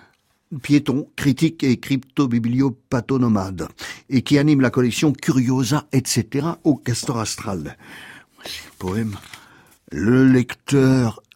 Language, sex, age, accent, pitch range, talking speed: French, male, 60-79, French, 110-140 Hz, 105 wpm